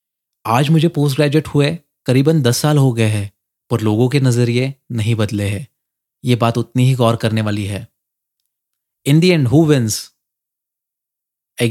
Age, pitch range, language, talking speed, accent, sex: 20-39, 110-130 Hz, Hindi, 165 wpm, native, male